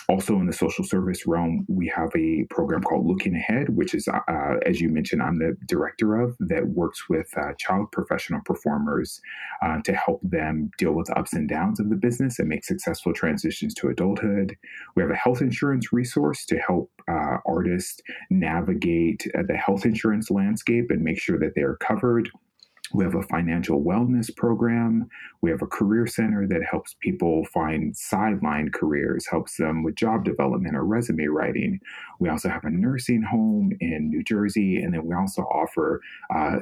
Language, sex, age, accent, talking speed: English, male, 30-49, American, 185 wpm